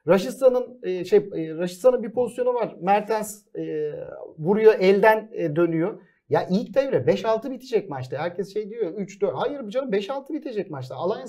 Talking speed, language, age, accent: 150 wpm, Turkish, 40-59, native